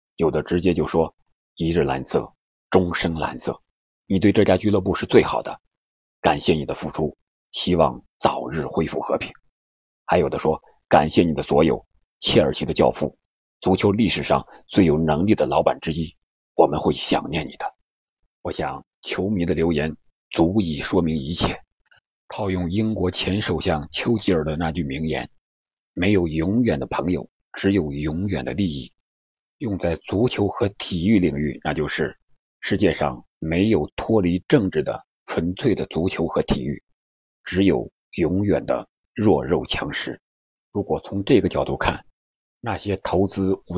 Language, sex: Chinese, male